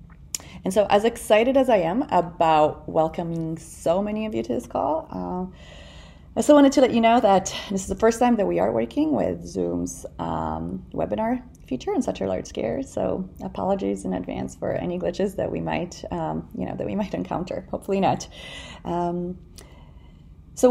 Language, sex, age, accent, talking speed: English, female, 30-49, American, 190 wpm